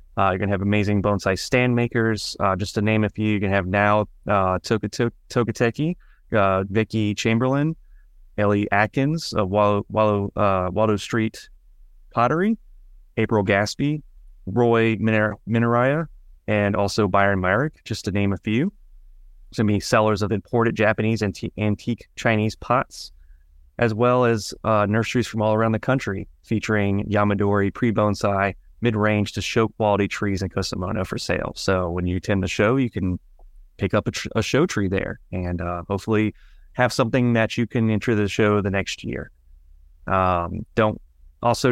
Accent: American